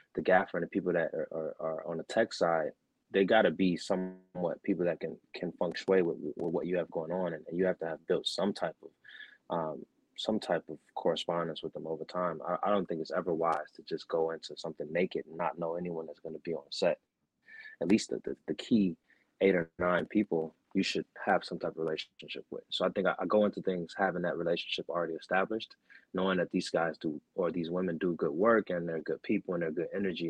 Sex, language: male, English